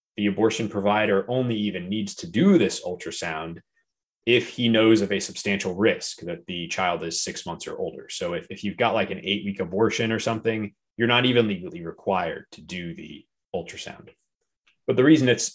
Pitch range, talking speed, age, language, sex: 90-115 Hz, 190 wpm, 20-39, English, male